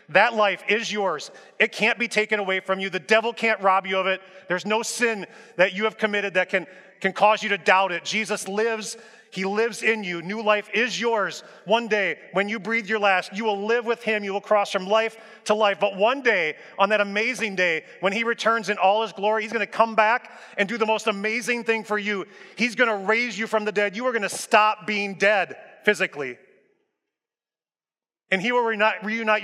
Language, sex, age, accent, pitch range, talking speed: English, male, 30-49, American, 185-220 Hz, 220 wpm